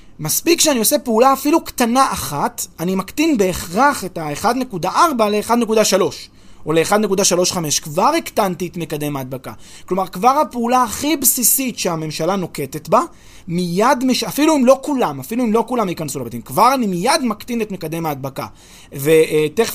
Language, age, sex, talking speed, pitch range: Hebrew, 20-39, male, 150 wpm, 155-230 Hz